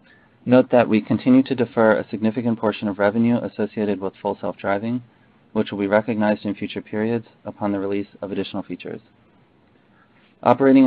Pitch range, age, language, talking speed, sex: 100-115 Hz, 30-49, English, 160 wpm, male